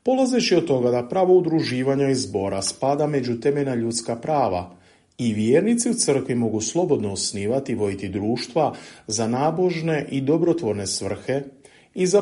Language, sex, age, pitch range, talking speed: Croatian, male, 40-59, 100-155 Hz, 140 wpm